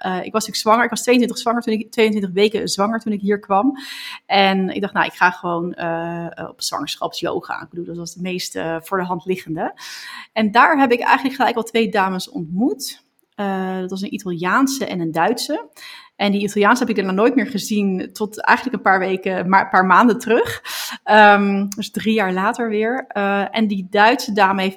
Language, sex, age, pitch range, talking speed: Dutch, female, 30-49, 185-230 Hz, 210 wpm